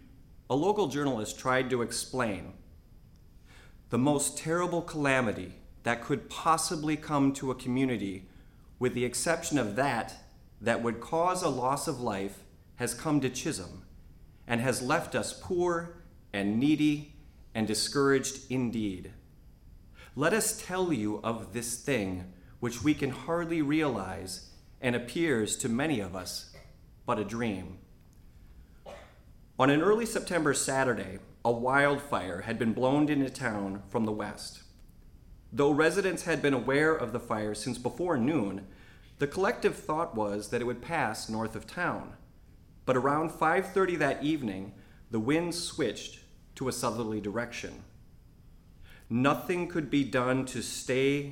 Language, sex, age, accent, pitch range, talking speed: English, male, 40-59, American, 105-145 Hz, 140 wpm